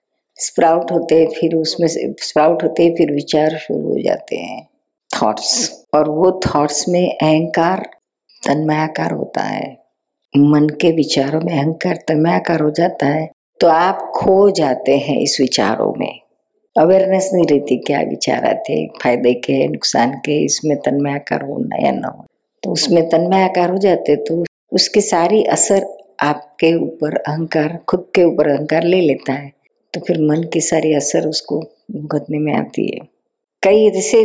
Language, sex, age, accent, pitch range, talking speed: Hindi, female, 50-69, native, 155-190 Hz, 150 wpm